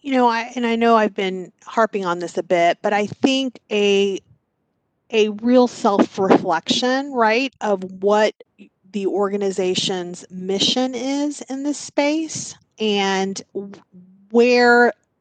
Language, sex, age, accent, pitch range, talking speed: English, female, 30-49, American, 190-240 Hz, 120 wpm